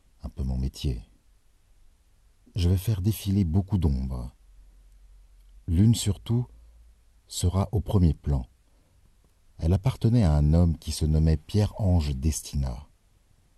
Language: French